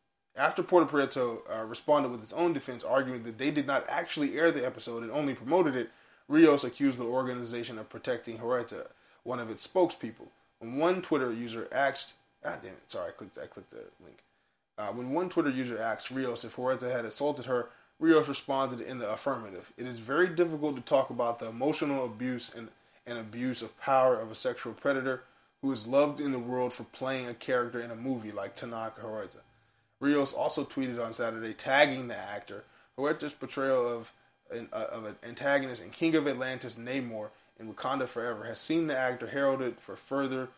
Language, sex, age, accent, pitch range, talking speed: English, male, 20-39, American, 115-140 Hz, 195 wpm